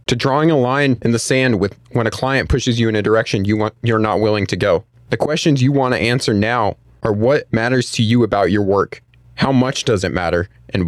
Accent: American